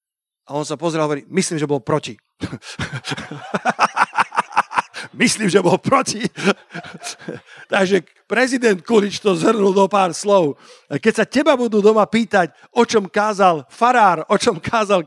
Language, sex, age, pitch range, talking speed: Slovak, male, 50-69, 185-240 Hz, 140 wpm